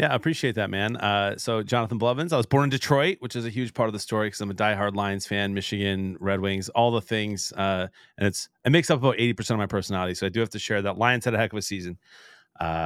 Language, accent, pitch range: English, American, 100-120 Hz